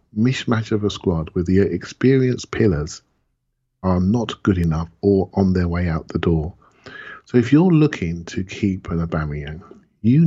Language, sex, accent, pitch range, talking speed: English, male, British, 85-105 Hz, 165 wpm